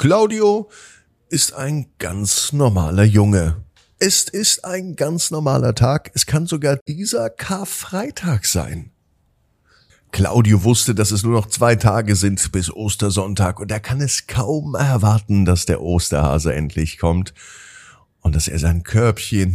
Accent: German